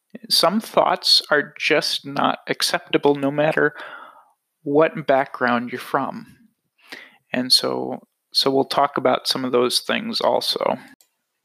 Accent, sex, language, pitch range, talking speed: American, male, English, 135-175 Hz, 120 wpm